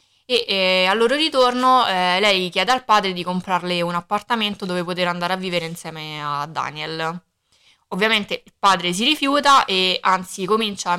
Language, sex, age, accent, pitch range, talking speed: Italian, female, 20-39, native, 170-225 Hz, 170 wpm